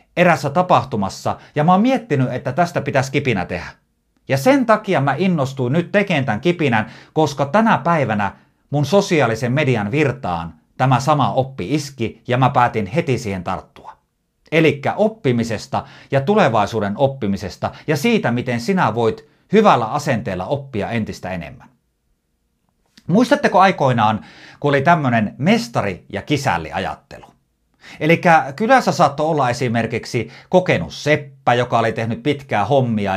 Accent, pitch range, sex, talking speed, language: native, 115-175 Hz, male, 130 wpm, Finnish